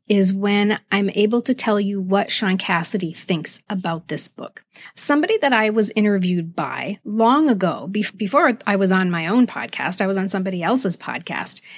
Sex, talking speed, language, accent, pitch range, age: female, 180 wpm, English, American, 190-245 Hz, 40-59